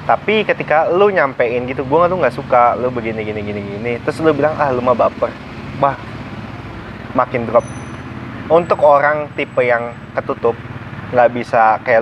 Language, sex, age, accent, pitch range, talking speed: Indonesian, male, 20-39, native, 110-145 Hz, 155 wpm